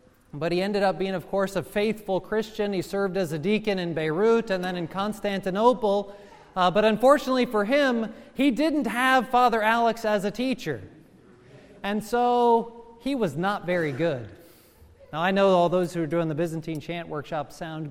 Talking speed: 180 wpm